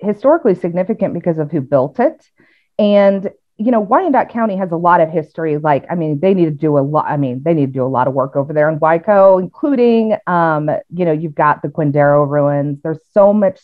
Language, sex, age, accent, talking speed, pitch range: English, female, 40-59, American, 230 wpm, 150-195 Hz